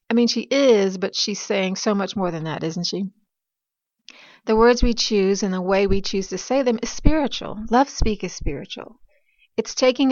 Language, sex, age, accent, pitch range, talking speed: English, female, 40-59, American, 185-225 Hz, 200 wpm